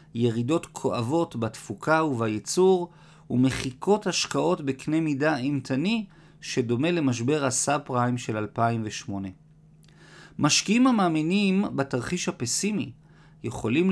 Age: 50-69